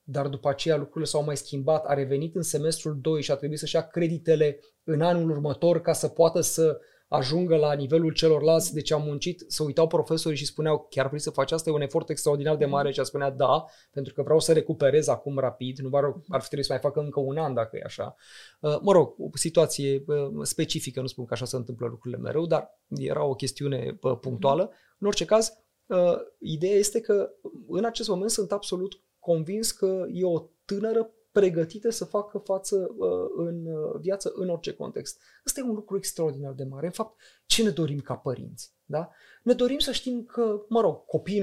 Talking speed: 205 wpm